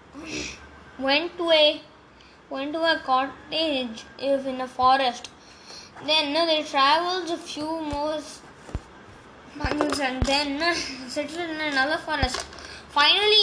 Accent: Indian